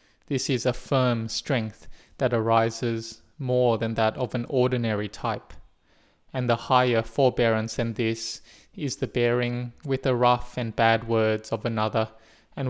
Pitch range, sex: 115-130 Hz, male